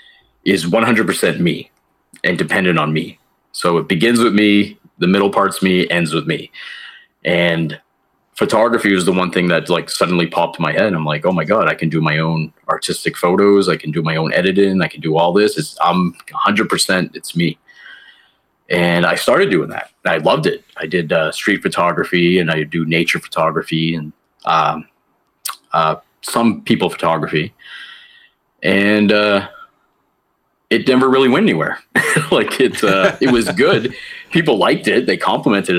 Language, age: English, 30-49